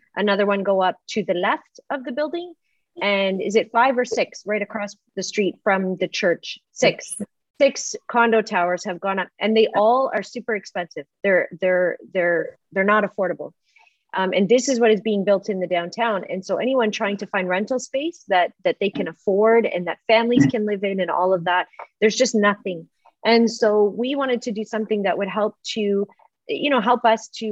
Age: 30-49